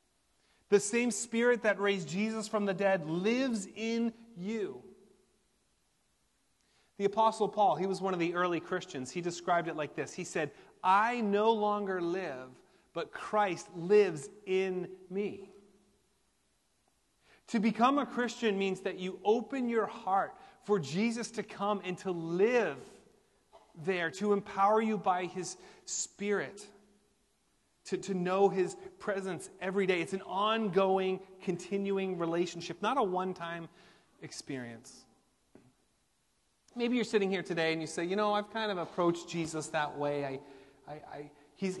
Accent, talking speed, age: American, 140 wpm, 30-49